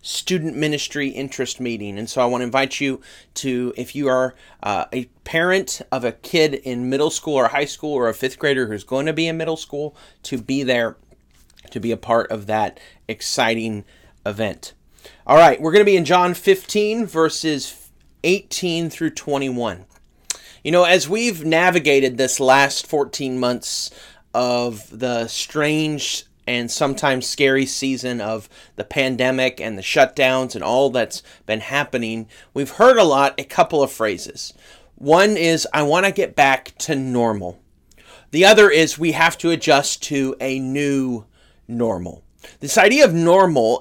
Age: 30-49